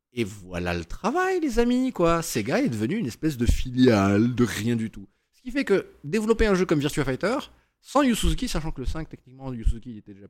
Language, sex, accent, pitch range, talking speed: French, male, French, 110-170 Hz, 220 wpm